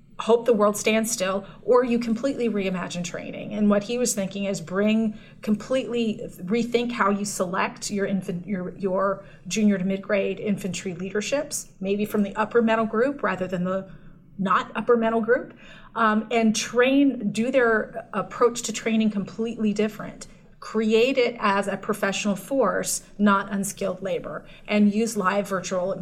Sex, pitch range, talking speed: female, 195-230 Hz, 155 wpm